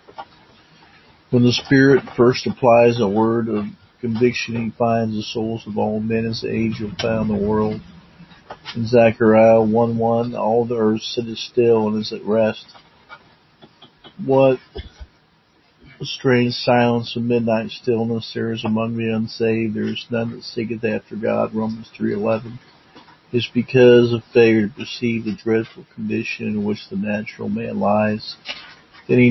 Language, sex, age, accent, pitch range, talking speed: English, male, 50-69, American, 110-120 Hz, 150 wpm